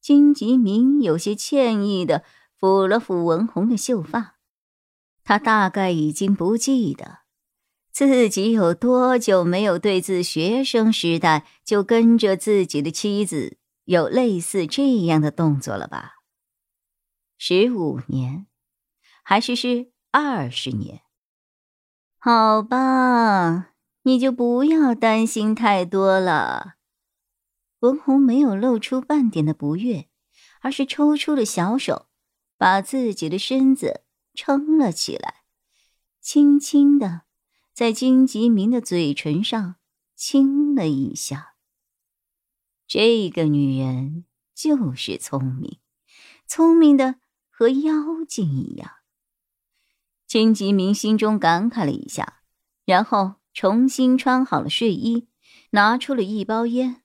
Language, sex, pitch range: Chinese, male, 180-255 Hz